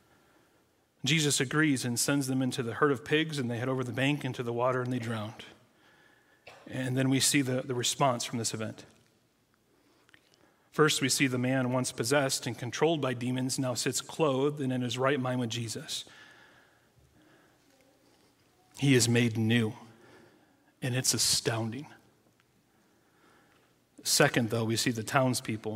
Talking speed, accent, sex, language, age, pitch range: 155 wpm, American, male, English, 40-59, 120-140 Hz